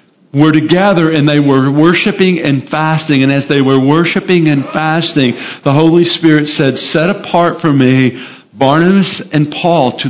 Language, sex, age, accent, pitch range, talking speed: English, male, 50-69, American, 140-175 Hz, 160 wpm